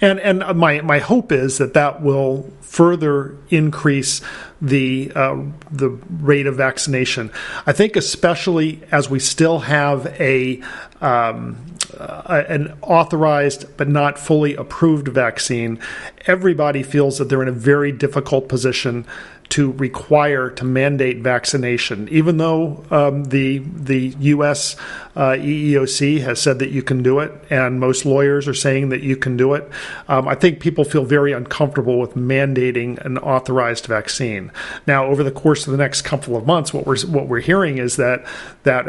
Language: English